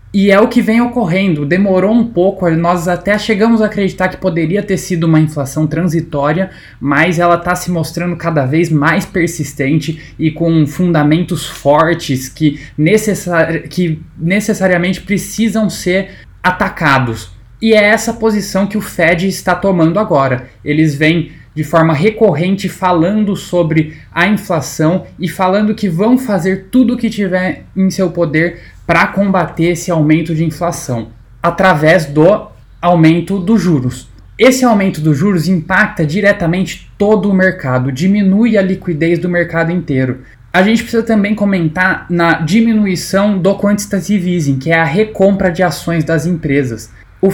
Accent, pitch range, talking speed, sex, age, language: Brazilian, 160-195 Hz, 145 wpm, male, 20-39, Portuguese